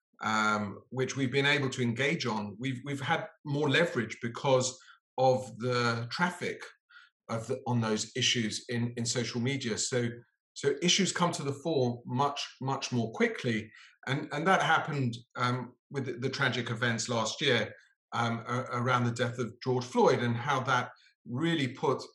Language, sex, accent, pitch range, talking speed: English, male, British, 115-135 Hz, 165 wpm